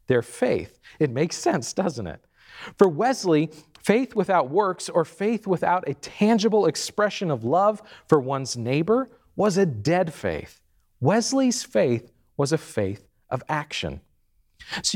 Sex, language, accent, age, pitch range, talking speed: male, English, American, 40-59, 150-210 Hz, 140 wpm